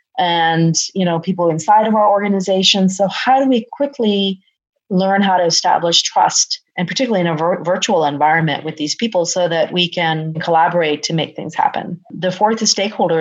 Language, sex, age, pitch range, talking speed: English, female, 30-49, 170-210 Hz, 180 wpm